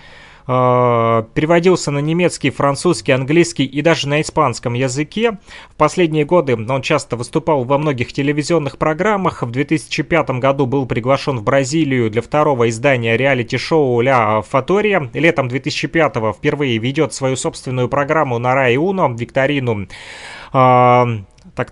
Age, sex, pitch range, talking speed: 30-49, male, 125-155 Hz, 125 wpm